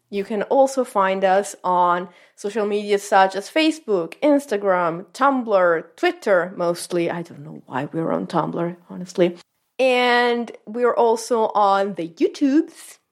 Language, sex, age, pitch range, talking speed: English, female, 30-49, 190-260 Hz, 135 wpm